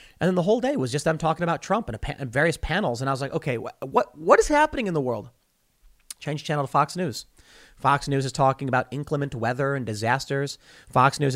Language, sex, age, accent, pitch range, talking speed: English, male, 30-49, American, 125-160 Hz, 225 wpm